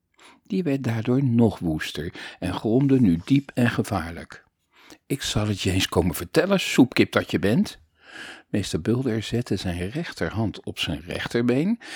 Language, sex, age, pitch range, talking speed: Dutch, male, 50-69, 90-130 Hz, 150 wpm